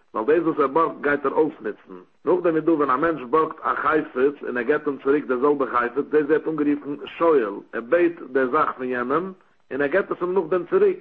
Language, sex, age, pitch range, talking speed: English, male, 60-79, 130-160 Hz, 230 wpm